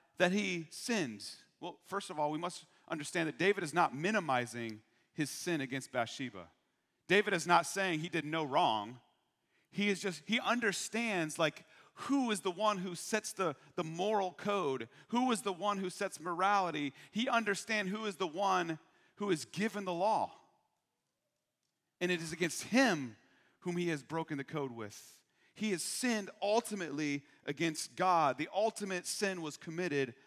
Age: 40-59